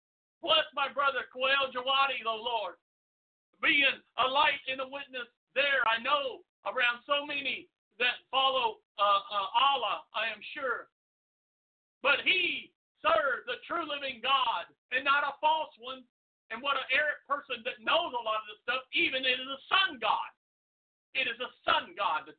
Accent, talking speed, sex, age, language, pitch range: American, 170 wpm, male, 50-69, English, 240-300 Hz